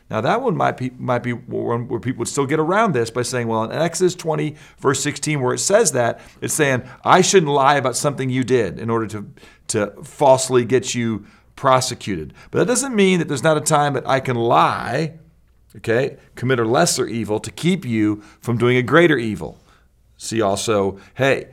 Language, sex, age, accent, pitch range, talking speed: English, male, 40-59, American, 110-145 Hz, 205 wpm